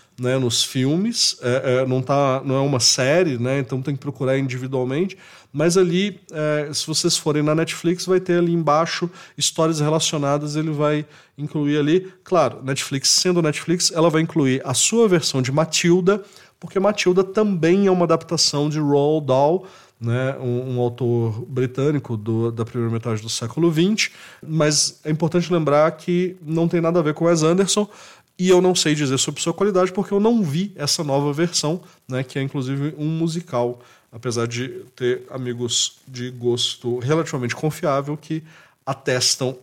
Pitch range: 125-170 Hz